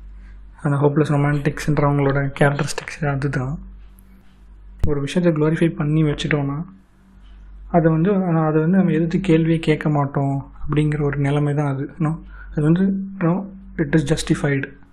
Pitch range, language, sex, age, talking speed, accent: 145-160 Hz, Tamil, male, 20-39, 115 wpm, native